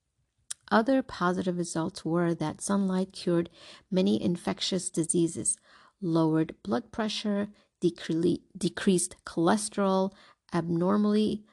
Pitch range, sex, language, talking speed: 170-210 Hz, female, English, 85 wpm